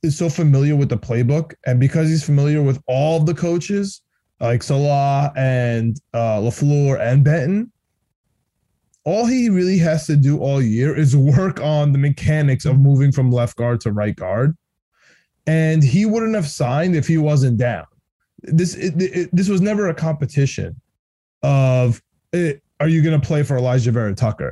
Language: English